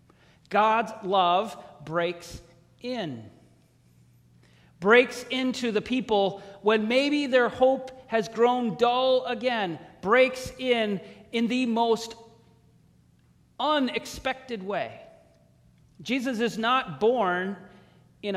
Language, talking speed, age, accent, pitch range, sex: English, 90 wpm, 40-59, American, 160-235 Hz, male